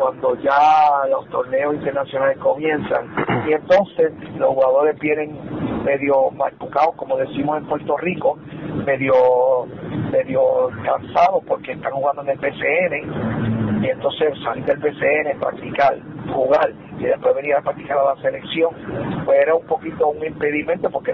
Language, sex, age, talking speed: Spanish, male, 50-69, 140 wpm